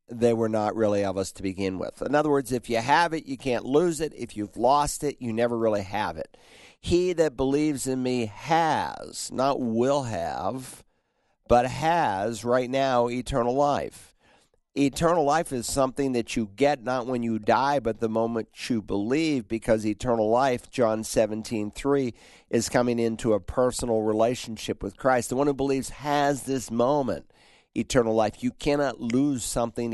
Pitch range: 110-135 Hz